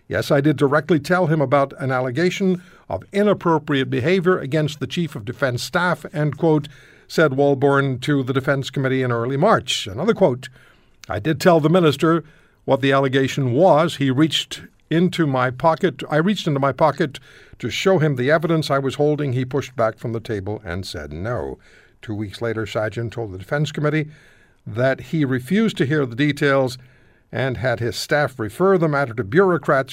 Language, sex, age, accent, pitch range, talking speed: English, male, 60-79, American, 125-165 Hz, 180 wpm